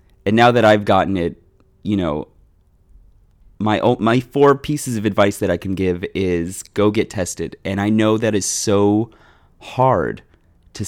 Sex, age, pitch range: male, 30-49, 90-115 Hz